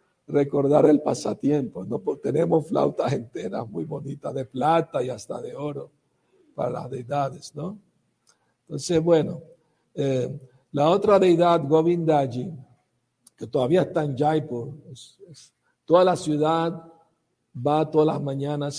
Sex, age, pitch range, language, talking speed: male, 60-79, 135-165 Hz, Spanish, 130 wpm